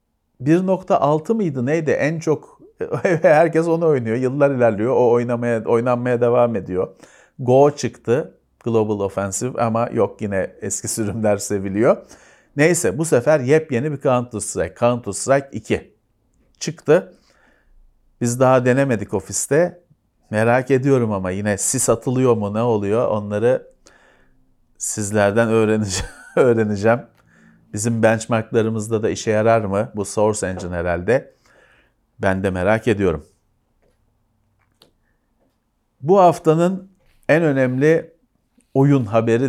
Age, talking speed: 40-59, 110 wpm